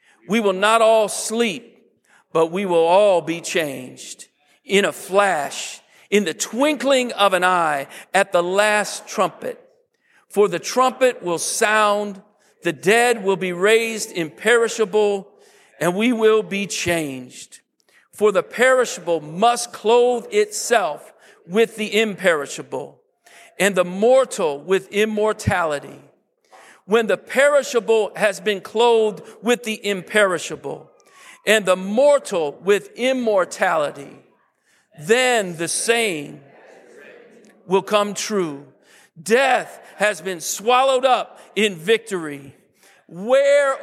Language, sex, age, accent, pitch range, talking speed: English, male, 50-69, American, 195-240 Hz, 110 wpm